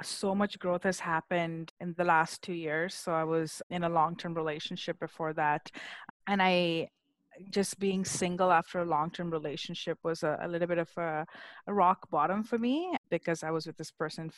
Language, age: English, 20-39